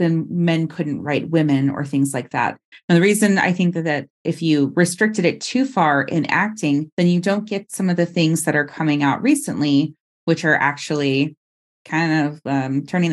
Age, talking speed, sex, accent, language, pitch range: 30-49, 200 wpm, female, American, English, 145-175 Hz